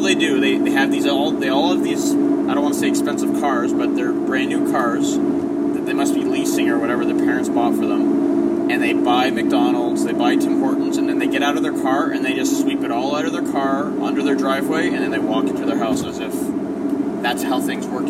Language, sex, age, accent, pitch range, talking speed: English, male, 20-39, American, 305-325 Hz, 255 wpm